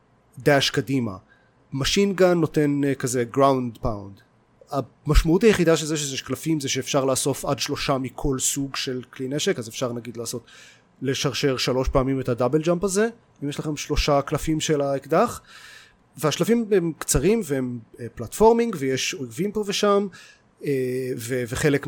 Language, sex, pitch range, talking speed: Hebrew, male, 130-165 Hz, 145 wpm